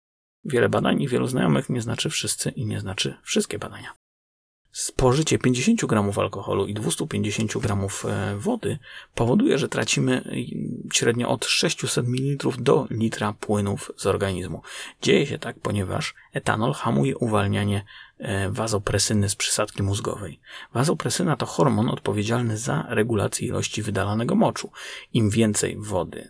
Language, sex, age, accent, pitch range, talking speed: Polish, male, 30-49, native, 105-125 Hz, 130 wpm